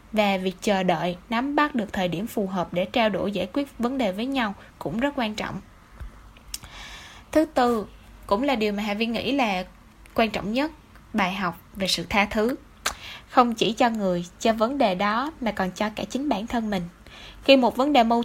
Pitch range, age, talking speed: 190-250 Hz, 10-29, 210 wpm